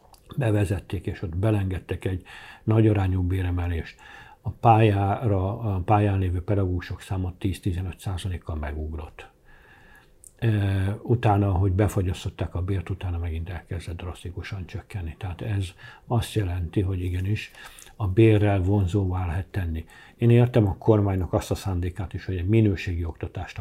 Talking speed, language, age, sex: 130 wpm, Hungarian, 60-79, male